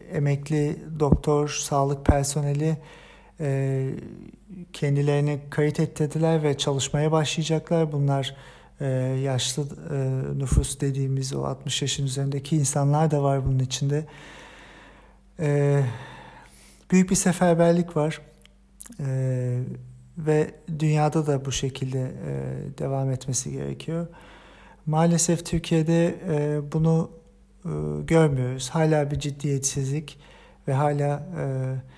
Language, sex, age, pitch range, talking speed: German, male, 50-69, 135-160 Hz, 95 wpm